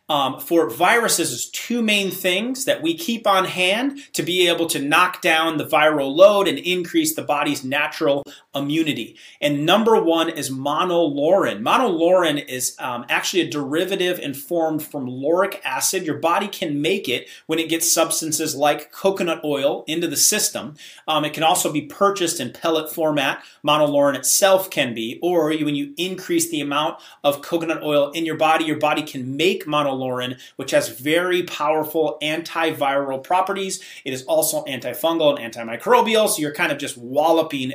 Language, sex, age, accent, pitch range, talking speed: English, male, 30-49, American, 145-180 Hz, 170 wpm